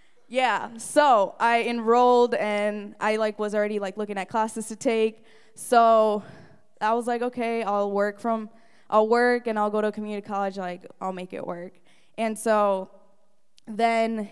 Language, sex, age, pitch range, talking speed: English, female, 10-29, 195-225 Hz, 170 wpm